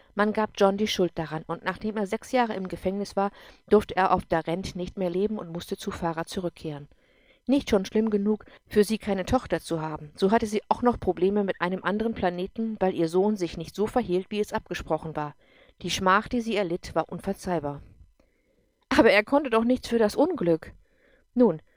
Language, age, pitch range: English, 50-69, 170-215 Hz